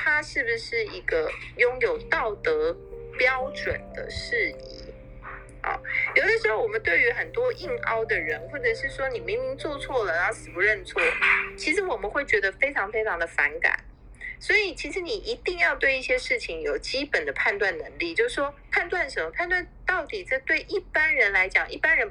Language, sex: Chinese, female